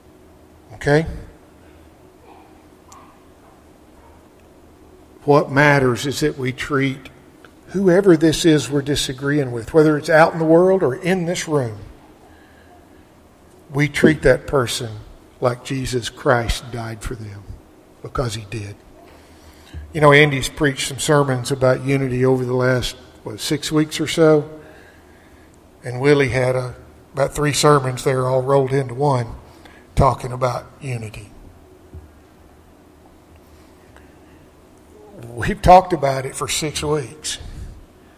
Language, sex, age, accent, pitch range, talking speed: English, male, 50-69, American, 90-140 Hz, 115 wpm